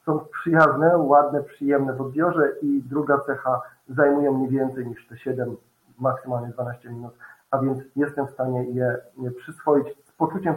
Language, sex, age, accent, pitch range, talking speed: Polish, male, 40-59, native, 135-155 Hz, 160 wpm